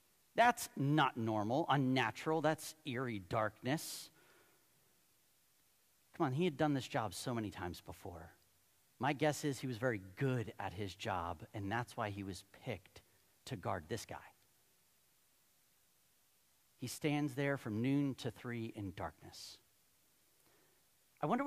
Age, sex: 40-59, male